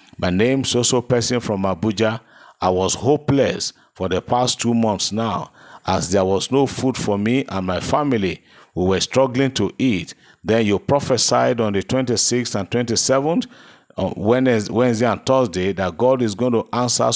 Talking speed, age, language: 175 wpm, 50-69, English